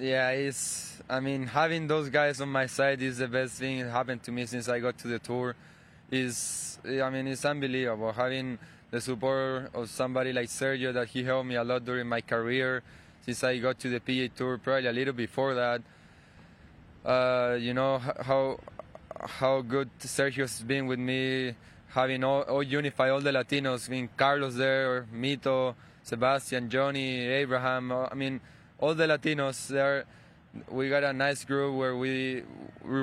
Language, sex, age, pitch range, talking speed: English, male, 20-39, 125-135 Hz, 175 wpm